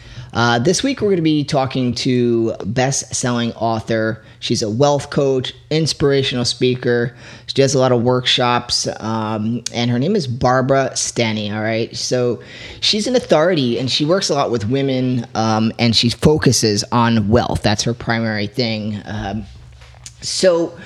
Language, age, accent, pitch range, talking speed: English, 30-49, American, 110-135 Hz, 155 wpm